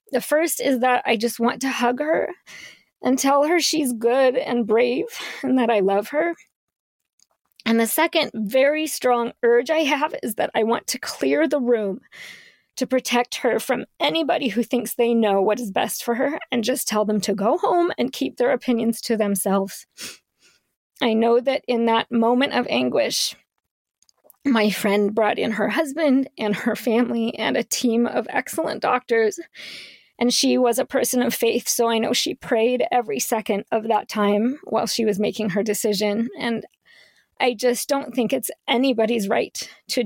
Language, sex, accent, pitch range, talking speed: English, female, American, 220-270 Hz, 180 wpm